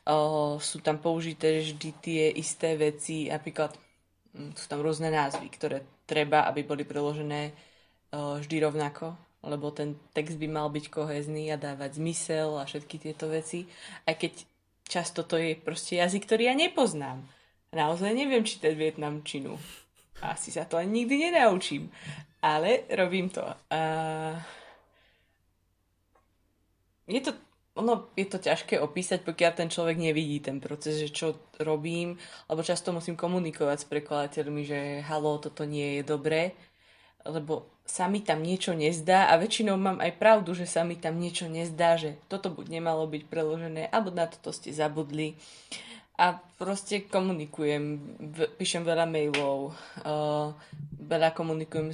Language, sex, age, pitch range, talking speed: Slovak, female, 20-39, 150-170 Hz, 145 wpm